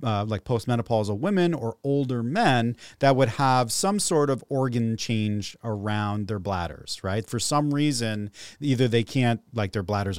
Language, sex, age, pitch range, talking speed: English, male, 30-49, 110-140 Hz, 165 wpm